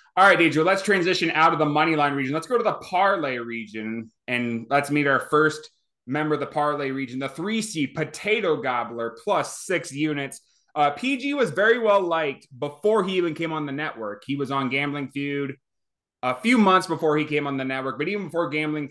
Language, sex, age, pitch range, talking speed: English, male, 20-39, 130-160 Hz, 210 wpm